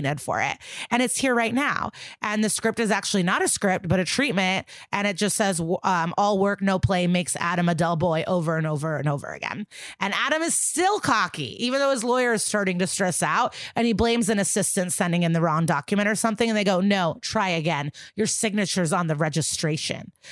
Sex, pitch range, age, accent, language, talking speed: female, 170-220 Hz, 30-49, American, English, 220 wpm